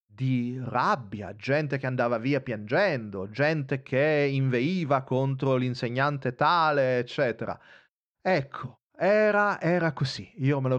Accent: native